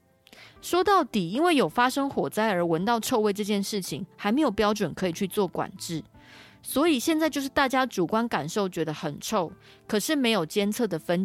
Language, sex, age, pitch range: Chinese, female, 20-39, 180-240 Hz